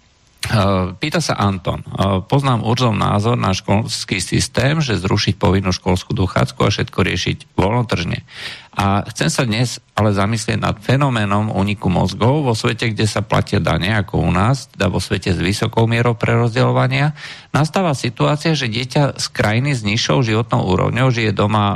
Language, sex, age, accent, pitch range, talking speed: Czech, male, 50-69, Slovak, 100-125 Hz, 160 wpm